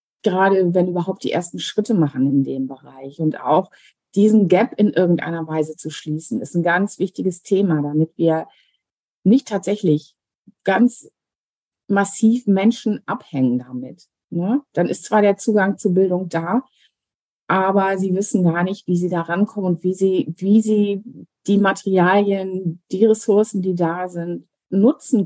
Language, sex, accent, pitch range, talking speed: German, female, German, 150-195 Hz, 150 wpm